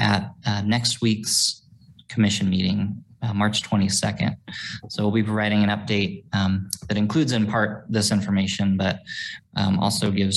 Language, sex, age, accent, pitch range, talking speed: English, male, 20-39, American, 100-120 Hz, 150 wpm